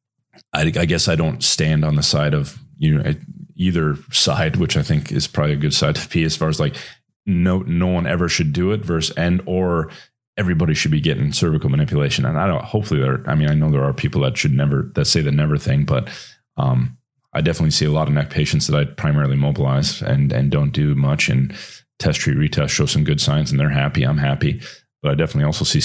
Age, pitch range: 30-49, 75-85 Hz